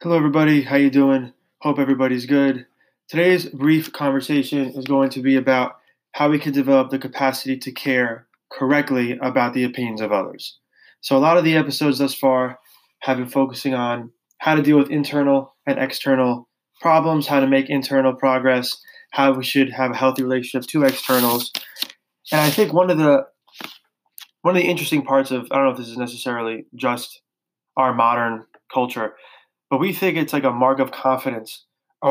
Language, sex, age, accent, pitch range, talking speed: English, male, 20-39, American, 130-150 Hz, 180 wpm